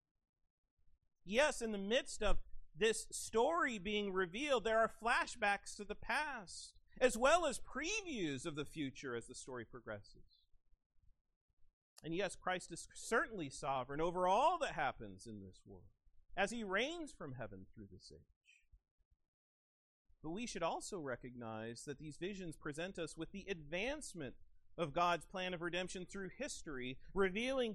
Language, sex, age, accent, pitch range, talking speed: English, male, 40-59, American, 135-220 Hz, 145 wpm